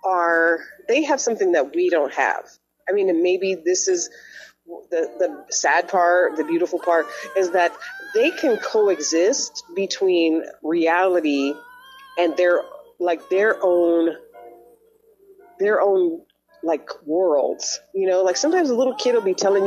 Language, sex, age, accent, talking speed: English, female, 30-49, American, 145 wpm